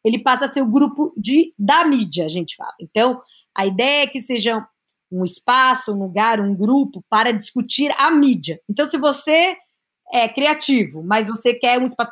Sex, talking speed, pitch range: female, 185 wpm, 220-275 Hz